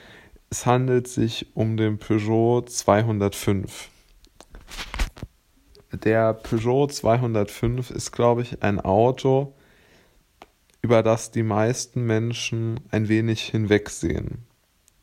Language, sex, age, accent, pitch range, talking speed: German, male, 20-39, German, 105-125 Hz, 90 wpm